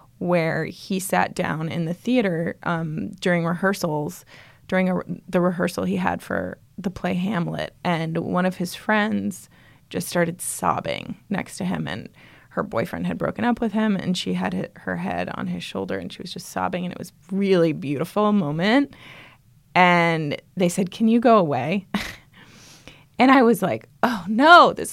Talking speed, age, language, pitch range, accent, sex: 175 wpm, 20-39, English, 160-205 Hz, American, female